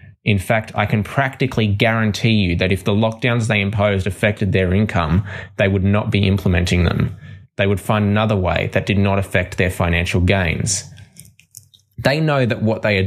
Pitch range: 95-120 Hz